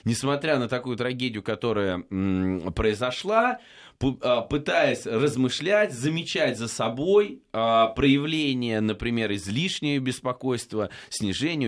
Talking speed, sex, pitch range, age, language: 85 wpm, male, 105-140 Hz, 20-39, Russian